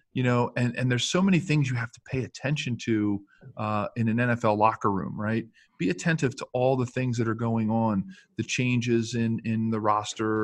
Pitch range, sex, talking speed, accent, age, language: 110-125 Hz, male, 215 wpm, American, 40-59, English